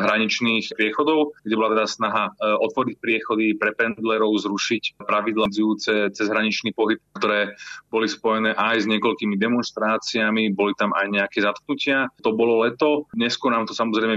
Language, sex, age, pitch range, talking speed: Slovak, male, 30-49, 105-115 Hz, 145 wpm